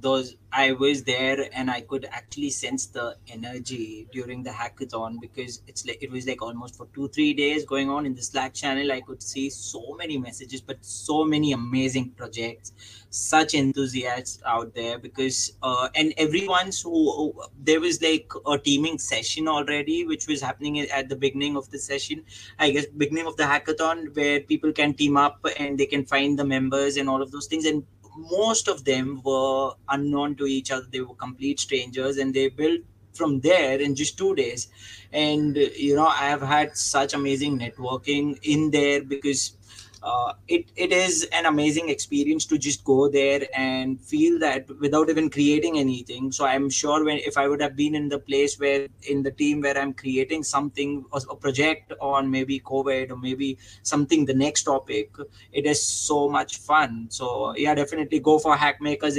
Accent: Indian